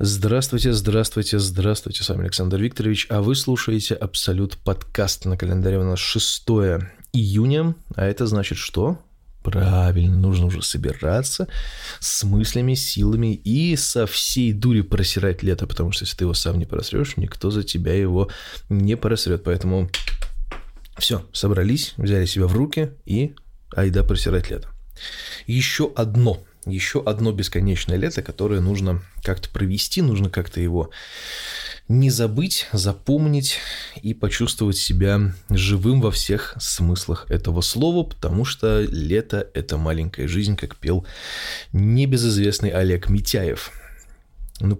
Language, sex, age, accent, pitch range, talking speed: Russian, male, 20-39, native, 90-115 Hz, 130 wpm